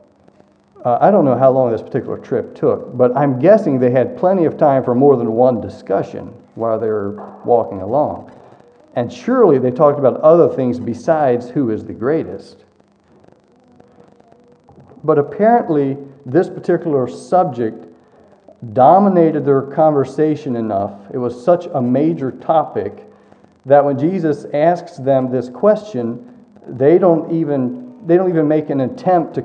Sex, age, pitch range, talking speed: male, 40-59, 120-155 Hz, 145 wpm